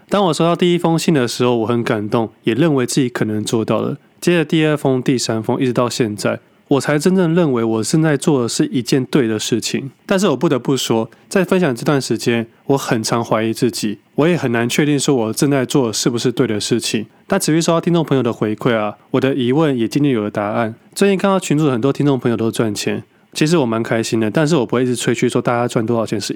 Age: 20-39